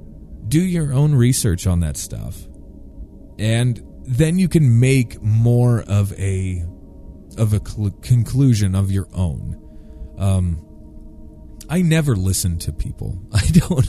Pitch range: 95-135 Hz